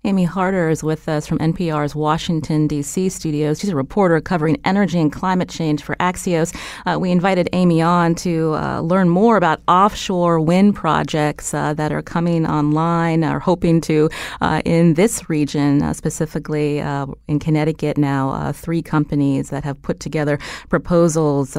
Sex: female